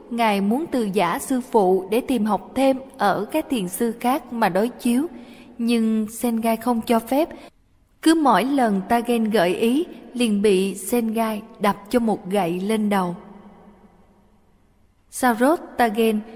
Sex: female